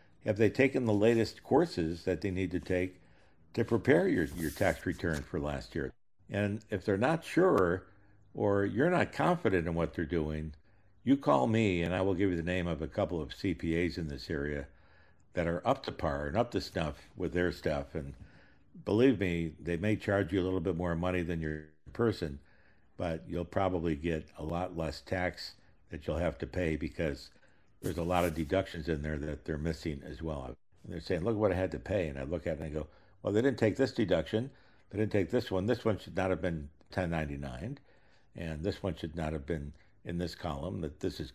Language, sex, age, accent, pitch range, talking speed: English, male, 60-79, American, 80-100 Hz, 220 wpm